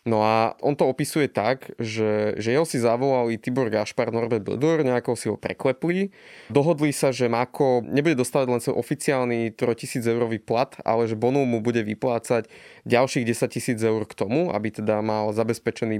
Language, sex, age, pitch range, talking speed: Slovak, male, 20-39, 115-145 Hz, 175 wpm